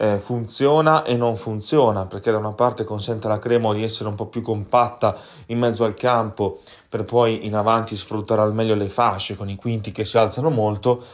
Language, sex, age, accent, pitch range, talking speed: Italian, male, 30-49, native, 105-120 Hz, 200 wpm